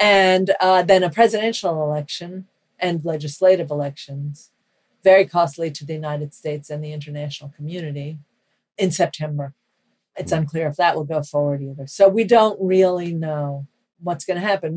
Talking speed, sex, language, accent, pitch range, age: 155 wpm, female, English, American, 150-185 Hz, 50-69